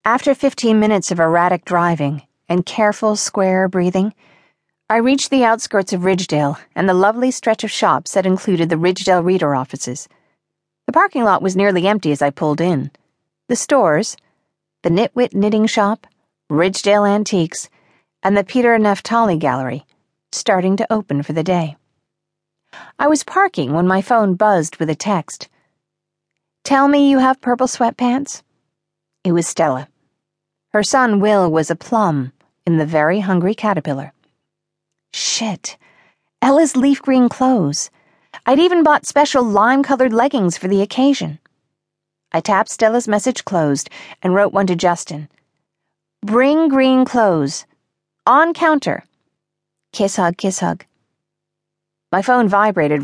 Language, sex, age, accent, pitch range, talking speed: English, female, 50-69, American, 165-230 Hz, 140 wpm